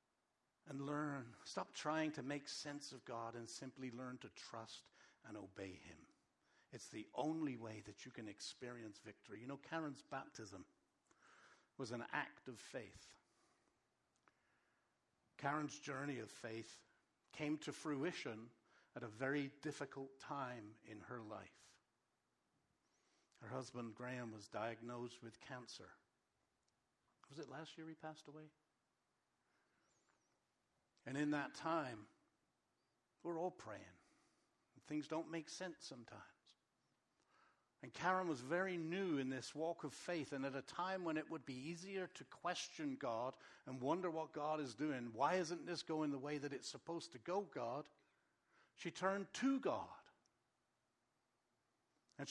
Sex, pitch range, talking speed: male, 125-180 Hz, 140 wpm